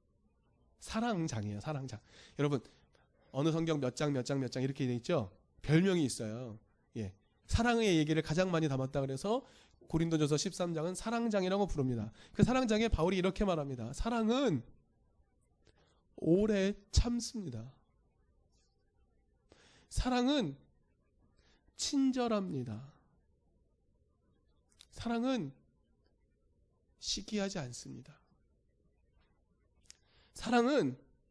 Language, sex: Korean, male